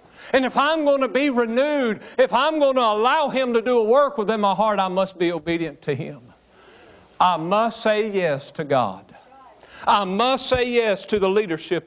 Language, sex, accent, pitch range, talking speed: English, male, American, 165-265 Hz, 195 wpm